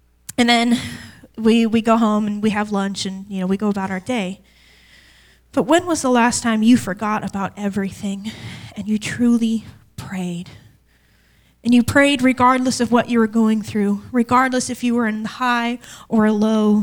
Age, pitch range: 10-29, 200-235 Hz